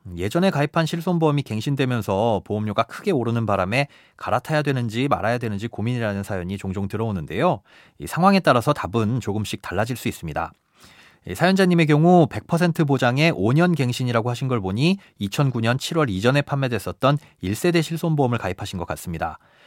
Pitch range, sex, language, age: 110-160 Hz, male, Korean, 30-49